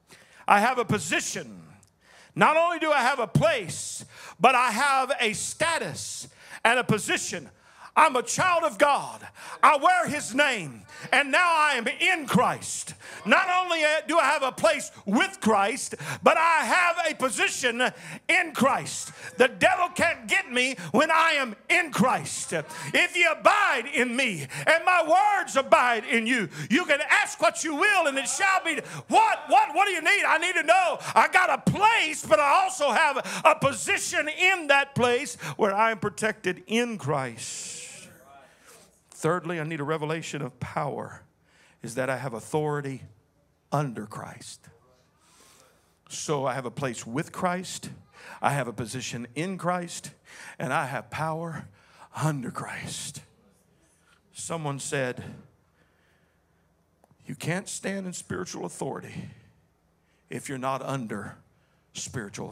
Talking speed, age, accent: 150 wpm, 50-69, American